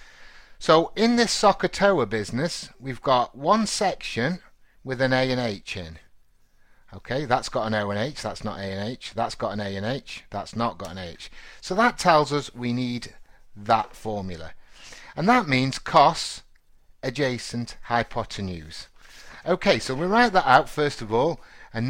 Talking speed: 170 wpm